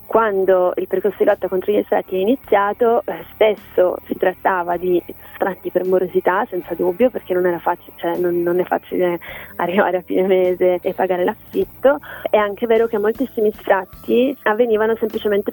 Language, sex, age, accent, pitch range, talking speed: Italian, female, 20-39, native, 180-210 Hz, 165 wpm